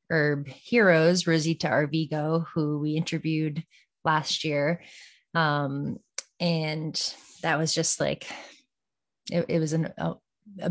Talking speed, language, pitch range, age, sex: 120 wpm, English, 150-170 Hz, 20-39, female